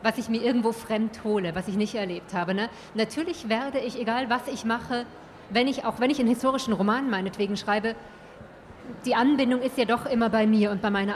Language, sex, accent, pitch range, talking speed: German, female, German, 210-245 Hz, 215 wpm